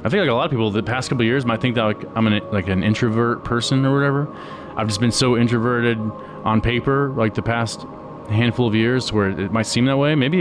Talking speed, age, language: 255 wpm, 20-39, English